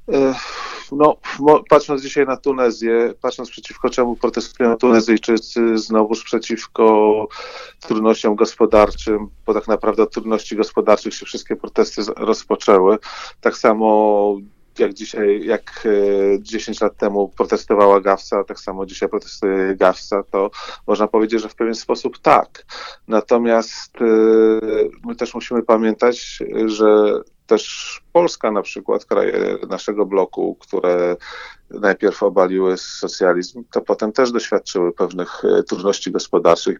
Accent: native